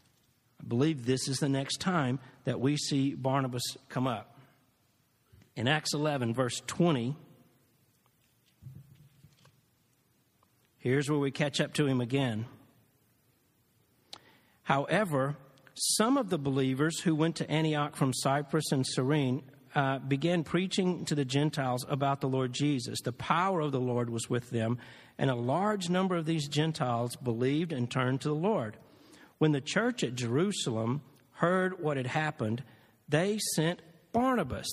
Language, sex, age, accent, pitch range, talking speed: English, male, 50-69, American, 130-175 Hz, 140 wpm